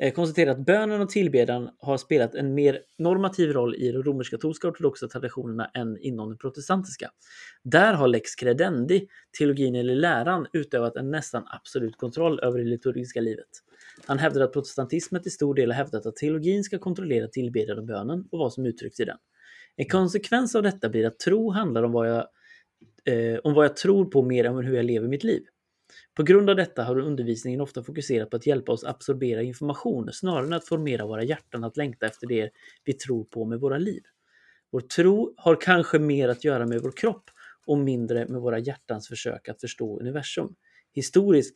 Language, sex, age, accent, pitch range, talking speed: Swedish, male, 30-49, native, 120-165 Hz, 190 wpm